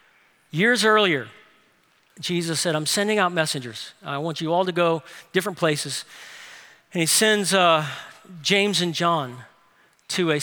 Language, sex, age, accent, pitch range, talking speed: English, male, 50-69, American, 145-185 Hz, 145 wpm